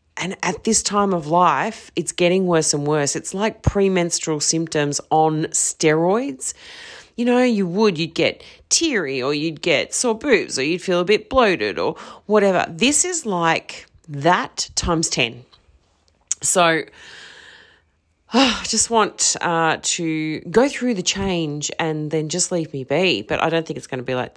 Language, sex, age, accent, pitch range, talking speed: English, female, 30-49, Australian, 140-185 Hz, 165 wpm